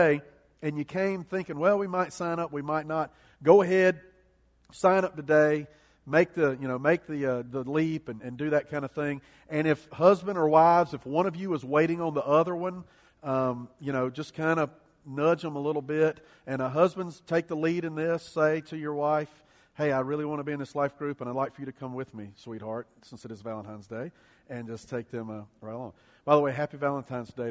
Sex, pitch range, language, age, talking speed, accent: male, 130-165 Hz, English, 40-59, 240 wpm, American